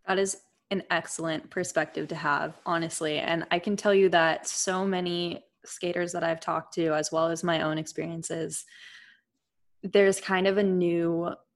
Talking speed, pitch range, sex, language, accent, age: 165 wpm, 165-190 Hz, female, English, American, 20-39